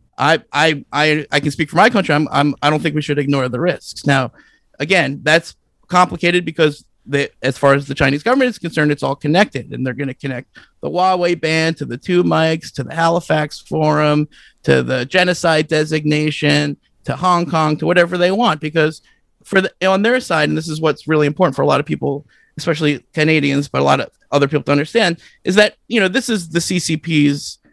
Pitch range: 145-180 Hz